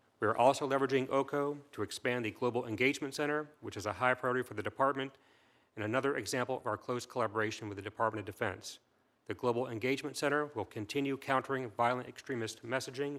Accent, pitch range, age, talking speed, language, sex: American, 110-135 Hz, 40-59, 185 wpm, English, male